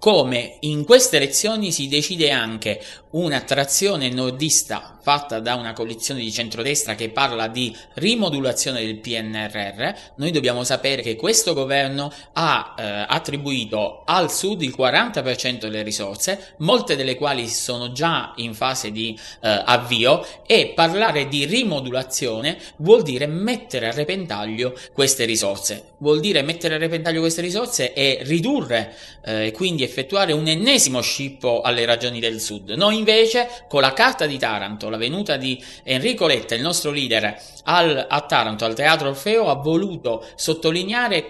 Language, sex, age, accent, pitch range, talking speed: Italian, male, 20-39, native, 120-170 Hz, 145 wpm